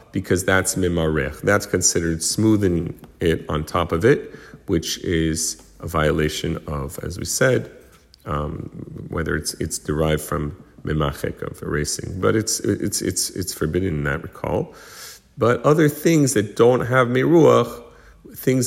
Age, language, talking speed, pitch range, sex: 40-59, English, 145 wpm, 85-120 Hz, male